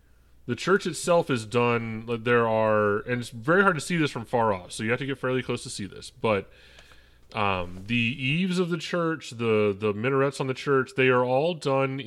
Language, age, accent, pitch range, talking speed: English, 30-49, American, 100-135 Hz, 220 wpm